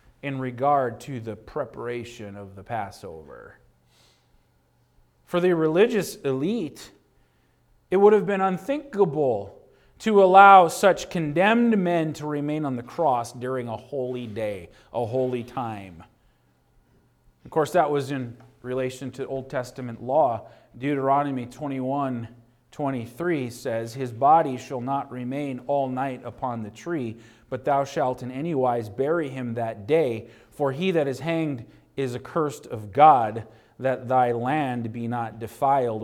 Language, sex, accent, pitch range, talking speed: English, male, American, 120-185 Hz, 140 wpm